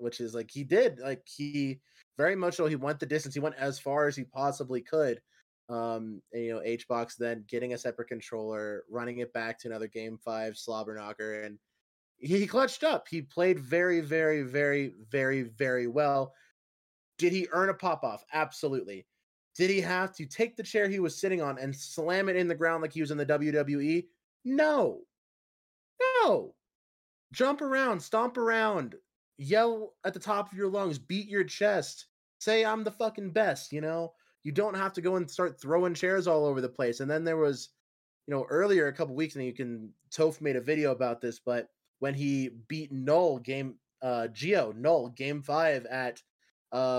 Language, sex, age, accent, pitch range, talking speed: English, male, 20-39, American, 130-185 Hz, 195 wpm